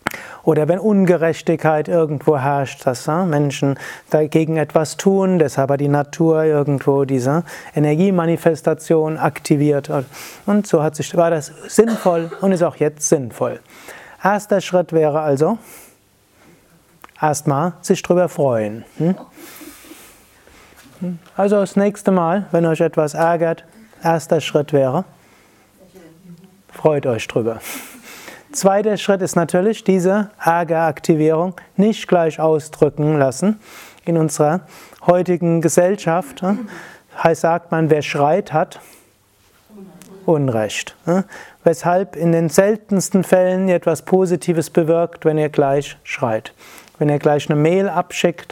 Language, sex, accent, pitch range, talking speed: German, male, German, 155-185 Hz, 115 wpm